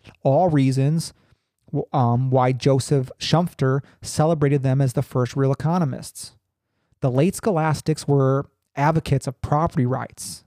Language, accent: English, American